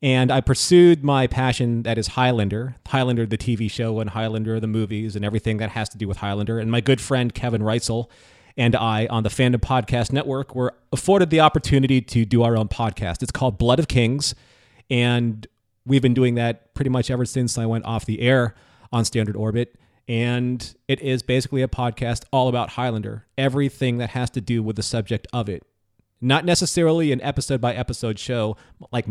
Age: 30-49